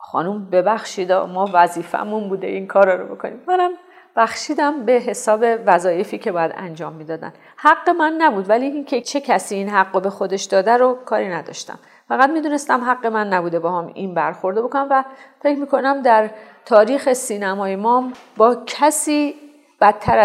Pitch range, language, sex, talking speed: 195-245 Hz, Persian, female, 155 wpm